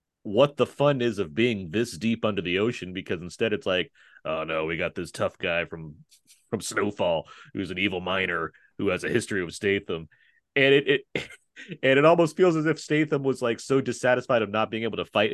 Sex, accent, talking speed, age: male, American, 215 wpm, 30-49